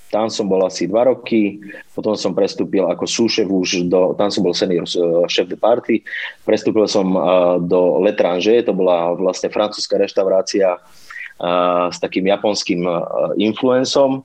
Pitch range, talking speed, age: 90-105 Hz, 145 wpm, 30-49